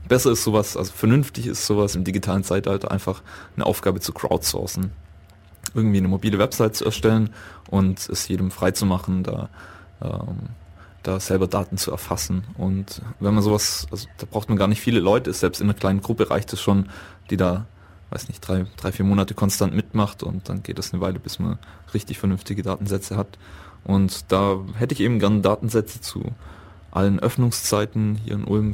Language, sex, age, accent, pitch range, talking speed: German, male, 20-39, German, 95-105 Hz, 185 wpm